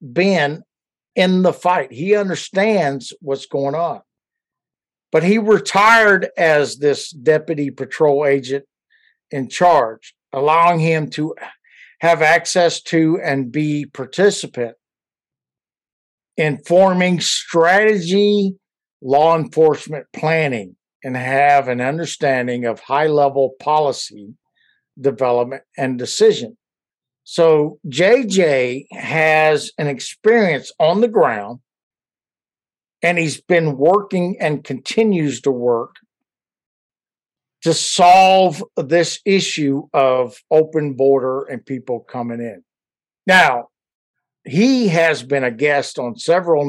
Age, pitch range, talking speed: 60-79, 135-175 Hz, 100 wpm